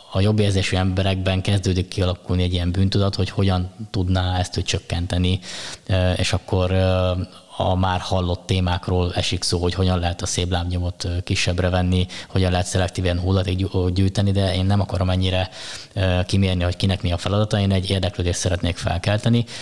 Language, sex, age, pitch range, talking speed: Hungarian, male, 20-39, 90-100 Hz, 160 wpm